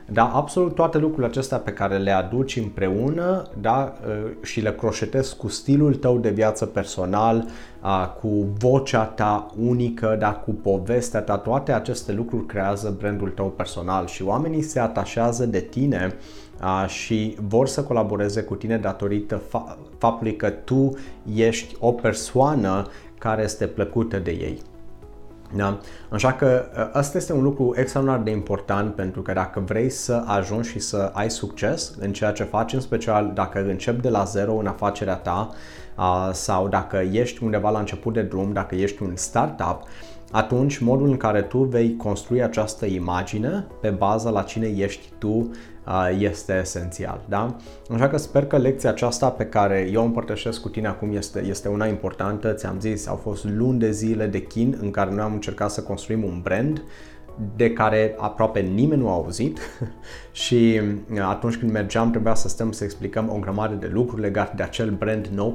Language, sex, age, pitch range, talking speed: Romanian, male, 30-49, 100-115 Hz, 170 wpm